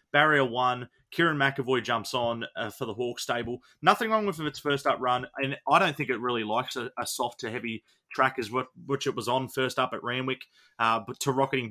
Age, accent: 20-39, Australian